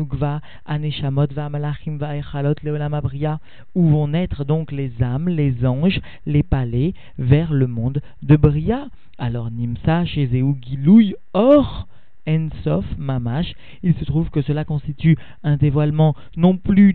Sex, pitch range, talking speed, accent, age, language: male, 140-160 Hz, 120 wpm, French, 40-59, French